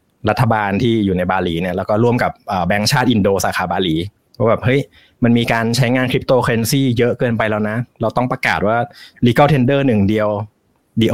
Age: 20-39